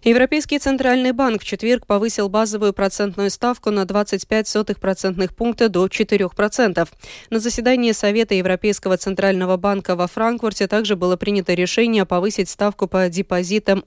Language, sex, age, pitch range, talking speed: Russian, female, 20-39, 180-220 Hz, 130 wpm